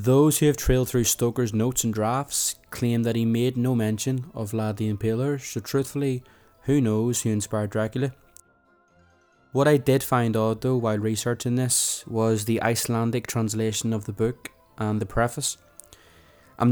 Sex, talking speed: male, 165 wpm